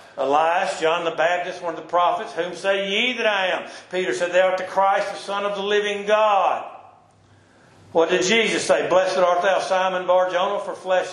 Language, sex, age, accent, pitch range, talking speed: English, male, 60-79, American, 185-260 Hz, 200 wpm